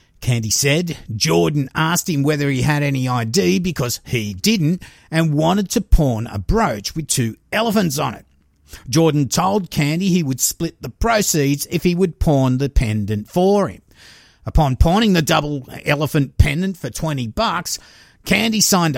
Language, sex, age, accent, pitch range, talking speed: English, male, 50-69, Australian, 130-180 Hz, 160 wpm